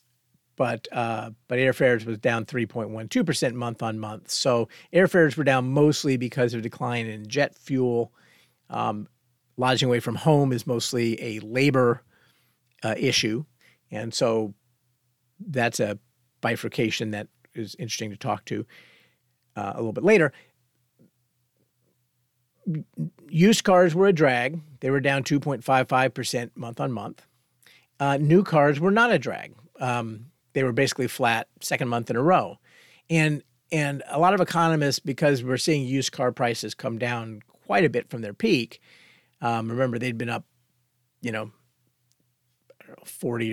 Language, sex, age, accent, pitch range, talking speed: English, male, 40-59, American, 115-140 Hz, 145 wpm